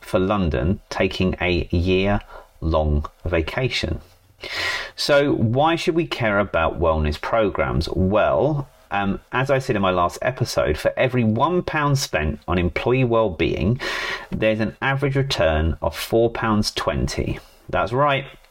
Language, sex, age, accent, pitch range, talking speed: English, male, 30-49, British, 90-135 Hz, 135 wpm